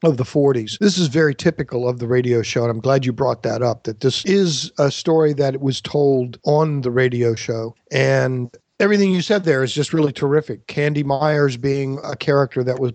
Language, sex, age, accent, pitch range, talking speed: English, male, 50-69, American, 120-155 Hz, 215 wpm